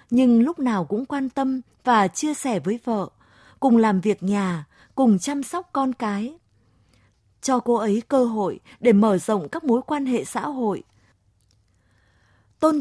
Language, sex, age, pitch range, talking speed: Vietnamese, female, 20-39, 190-255 Hz, 165 wpm